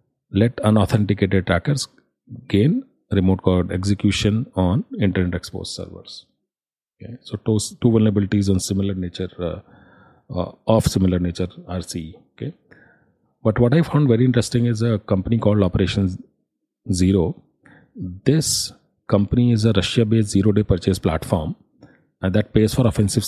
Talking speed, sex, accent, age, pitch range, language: 135 wpm, male, Indian, 40-59, 95-115 Hz, English